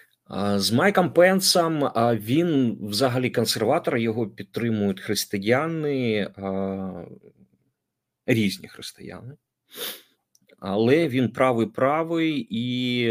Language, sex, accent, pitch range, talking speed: Ukrainian, male, native, 100-135 Hz, 70 wpm